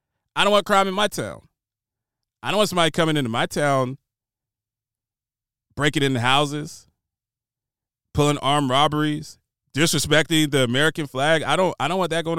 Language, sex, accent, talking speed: English, male, American, 155 wpm